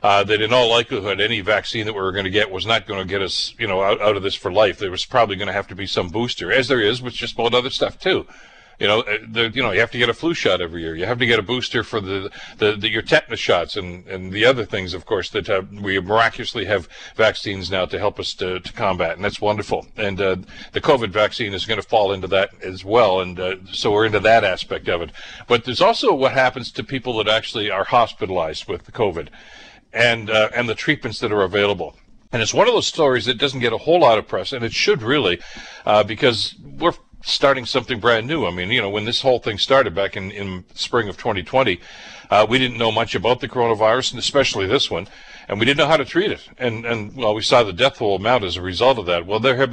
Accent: American